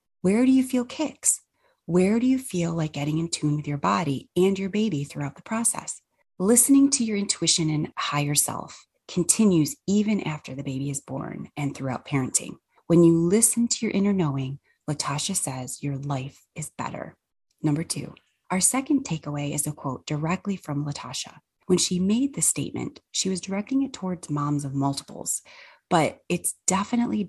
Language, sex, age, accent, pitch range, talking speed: English, female, 30-49, American, 150-210 Hz, 175 wpm